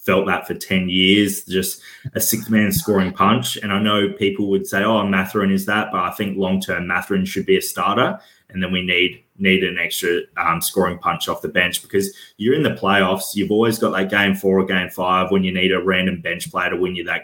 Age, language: 20-39, English